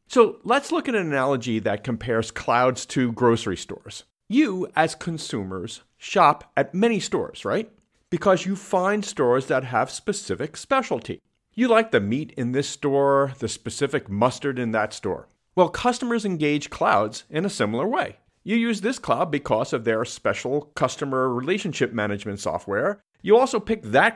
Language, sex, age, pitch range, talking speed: English, male, 50-69, 115-195 Hz, 160 wpm